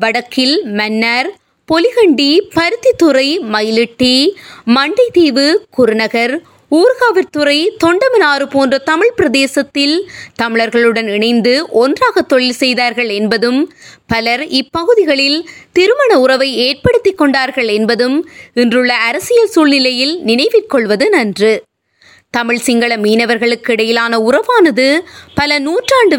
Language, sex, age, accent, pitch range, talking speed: Tamil, female, 20-39, native, 240-350 Hz, 85 wpm